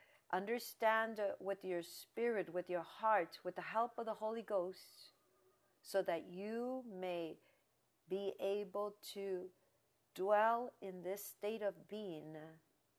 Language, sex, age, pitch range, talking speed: English, female, 50-69, 180-225 Hz, 125 wpm